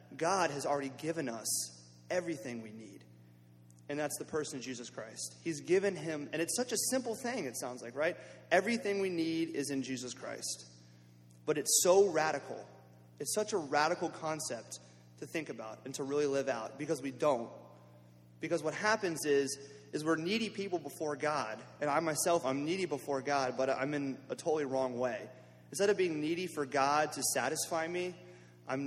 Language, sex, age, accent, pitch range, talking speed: English, male, 30-49, American, 105-155 Hz, 185 wpm